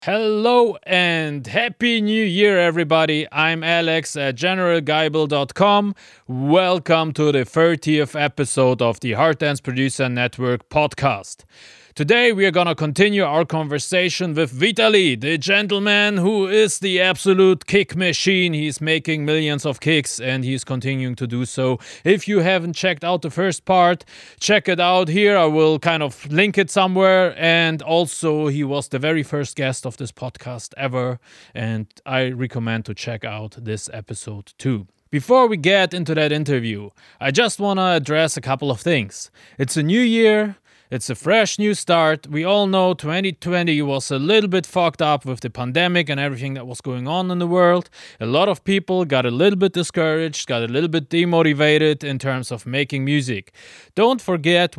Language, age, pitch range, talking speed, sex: English, 30-49, 130-180 Hz, 175 wpm, male